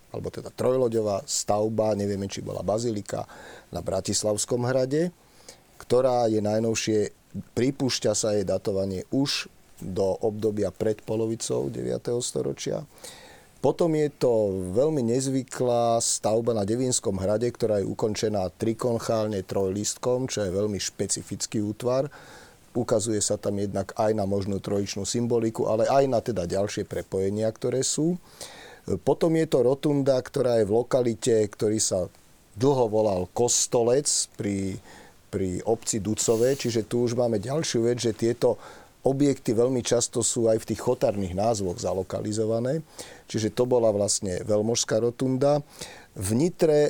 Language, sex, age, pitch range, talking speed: Slovak, male, 40-59, 100-125 Hz, 135 wpm